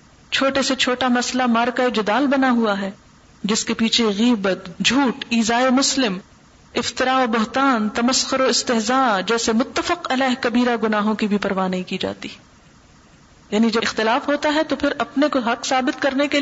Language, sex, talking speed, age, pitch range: Urdu, female, 165 wpm, 40-59, 215-255 Hz